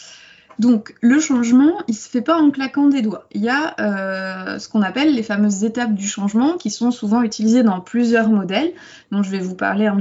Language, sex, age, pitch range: French, female, 20-39, 205-265 Hz